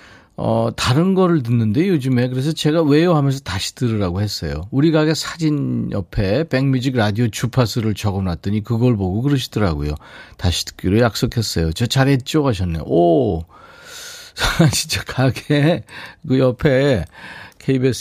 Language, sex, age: Korean, male, 40-59